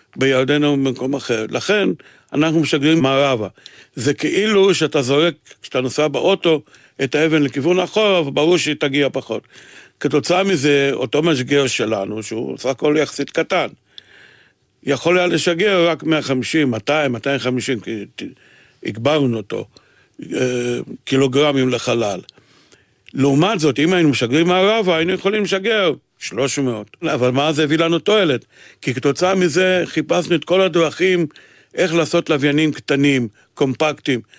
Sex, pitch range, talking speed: male, 130-165 Hz, 130 wpm